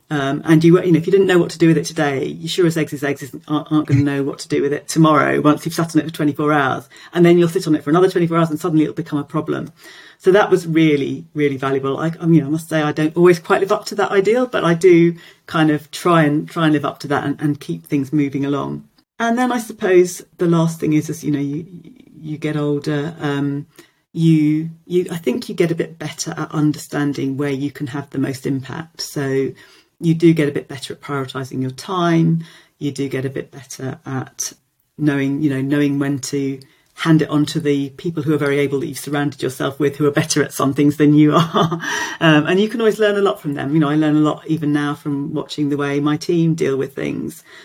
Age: 40-59